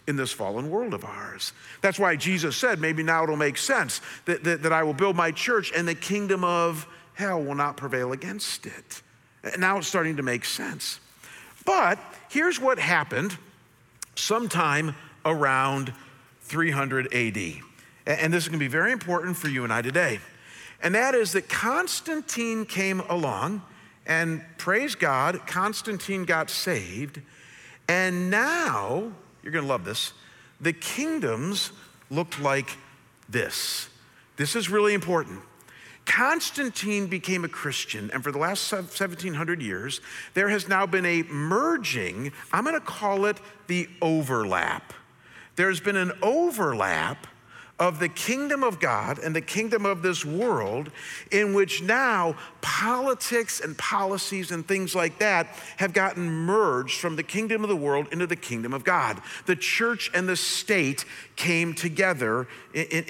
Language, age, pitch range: English, 50-69, 150-200 Hz